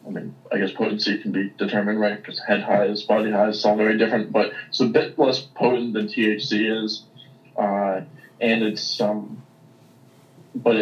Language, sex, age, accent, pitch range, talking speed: English, male, 20-39, American, 105-125 Hz, 175 wpm